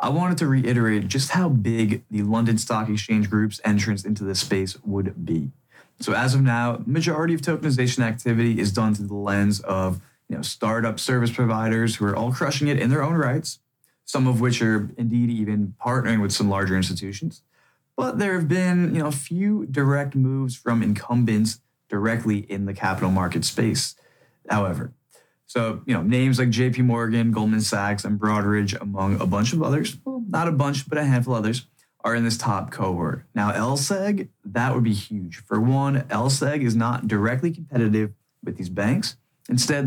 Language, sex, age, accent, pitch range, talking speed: English, male, 20-39, American, 105-130 Hz, 185 wpm